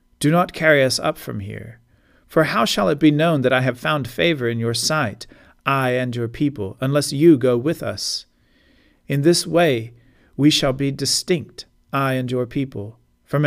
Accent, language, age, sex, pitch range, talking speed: American, English, 40-59, male, 105-140 Hz, 185 wpm